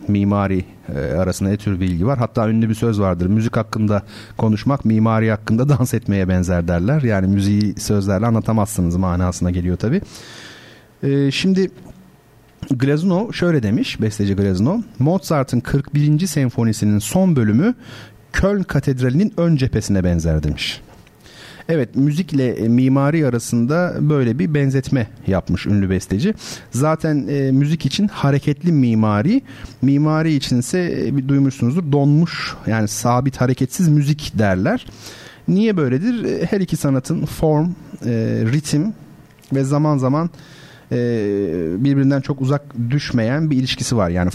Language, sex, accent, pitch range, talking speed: Turkish, male, native, 110-150 Hz, 120 wpm